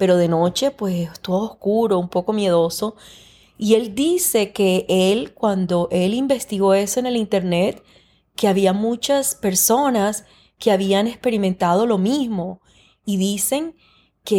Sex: female